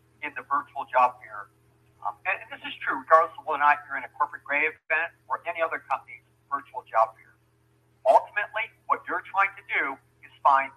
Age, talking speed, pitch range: 50-69, 205 wpm, 115-150 Hz